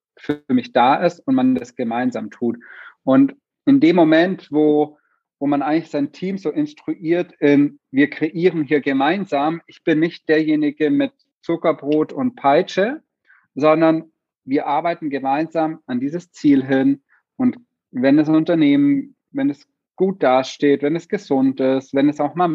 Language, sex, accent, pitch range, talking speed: German, male, German, 130-165 Hz, 155 wpm